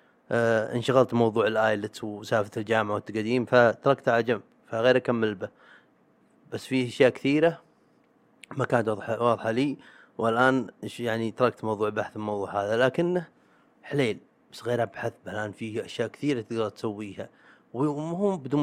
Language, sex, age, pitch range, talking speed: Arabic, male, 30-49, 115-145 Hz, 140 wpm